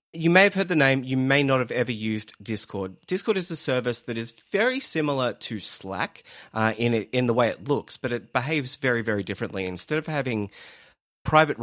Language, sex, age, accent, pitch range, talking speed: English, male, 30-49, Australian, 110-150 Hz, 210 wpm